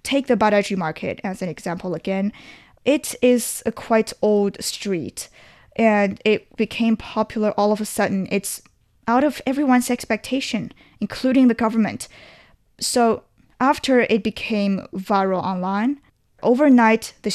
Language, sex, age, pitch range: English, female, 10-29, 200-235 Hz